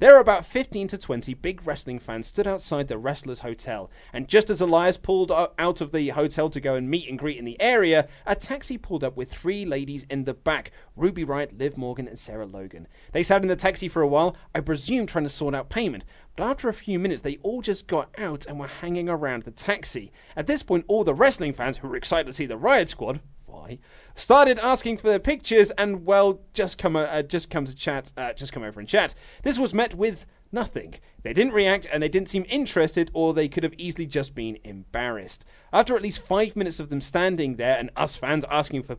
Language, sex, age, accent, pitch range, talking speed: English, male, 30-49, British, 135-195 Hz, 230 wpm